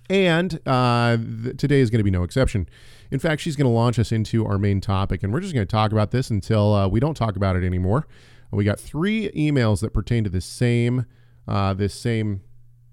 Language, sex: English, male